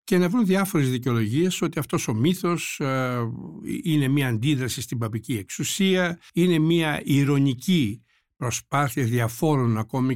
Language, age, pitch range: Greek, 60-79, 120-160 Hz